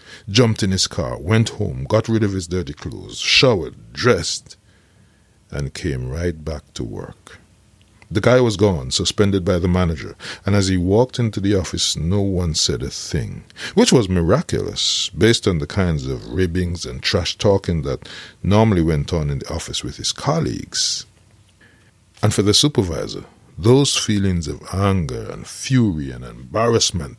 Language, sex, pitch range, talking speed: English, male, 90-110 Hz, 160 wpm